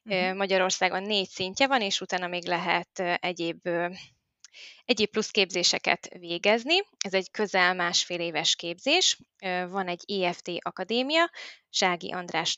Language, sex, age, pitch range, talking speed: Hungarian, female, 20-39, 180-240 Hz, 115 wpm